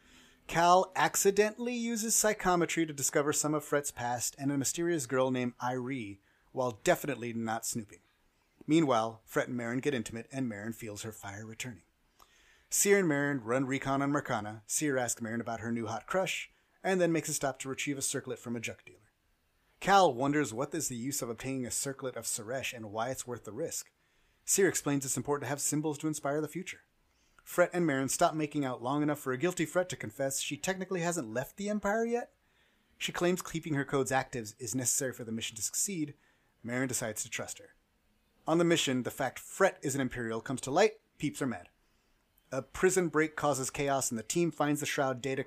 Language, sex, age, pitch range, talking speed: English, male, 30-49, 120-155 Hz, 205 wpm